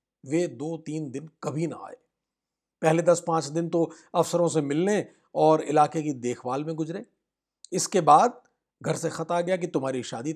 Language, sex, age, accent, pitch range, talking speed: Hindi, male, 50-69, native, 150-185 Hz, 180 wpm